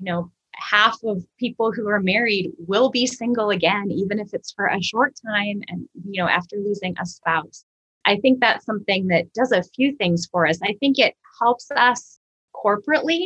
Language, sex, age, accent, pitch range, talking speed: English, female, 20-39, American, 170-215 Hz, 195 wpm